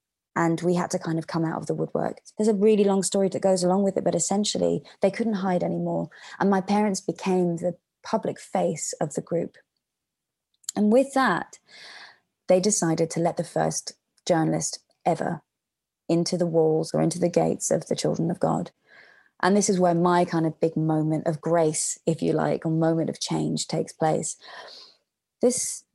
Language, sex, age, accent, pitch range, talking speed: English, female, 20-39, British, 160-185 Hz, 185 wpm